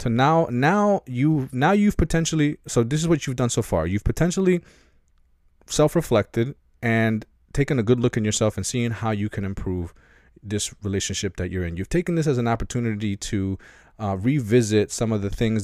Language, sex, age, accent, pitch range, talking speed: English, male, 20-39, American, 85-120 Hz, 190 wpm